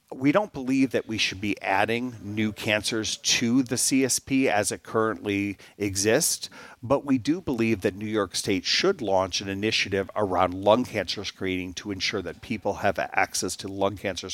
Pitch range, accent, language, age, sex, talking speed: 95-120 Hz, American, English, 50-69, male, 175 wpm